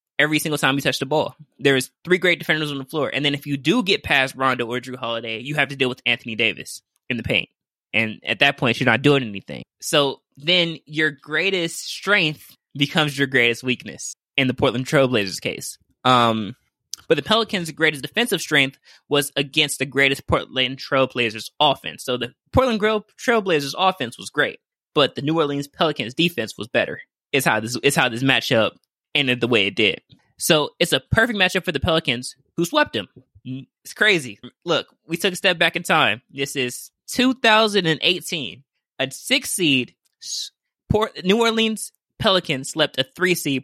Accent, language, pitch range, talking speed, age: American, English, 130-175 Hz, 190 wpm, 10-29